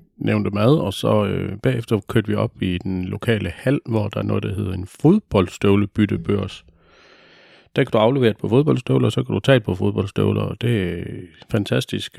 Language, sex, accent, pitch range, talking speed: Danish, male, native, 100-115 Hz, 200 wpm